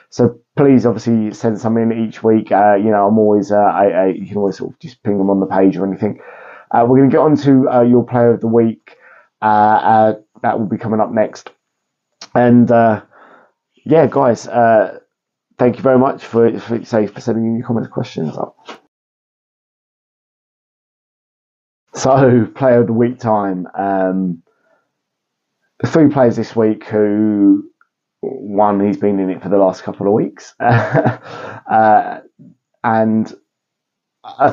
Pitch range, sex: 100-120 Hz, male